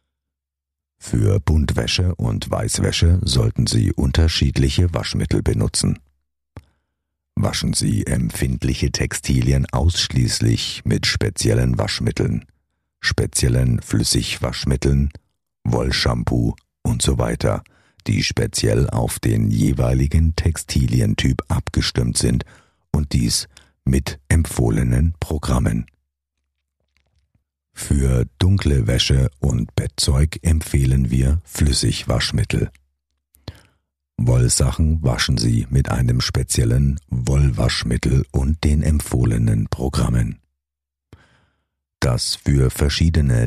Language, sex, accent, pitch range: German, male, German, 65-85 Hz